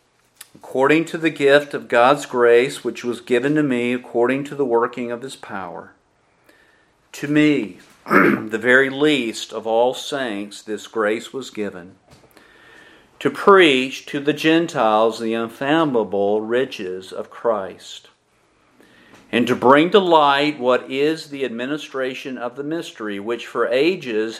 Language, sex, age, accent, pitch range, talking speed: English, male, 50-69, American, 110-145 Hz, 140 wpm